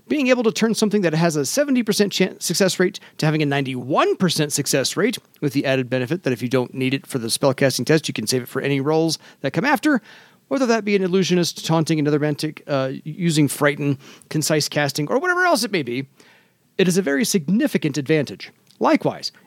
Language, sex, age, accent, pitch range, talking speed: English, male, 40-59, American, 150-205 Hz, 210 wpm